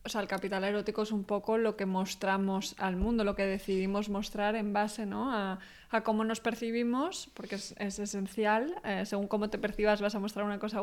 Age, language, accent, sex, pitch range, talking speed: 20-39, Spanish, Spanish, female, 205-225 Hz, 215 wpm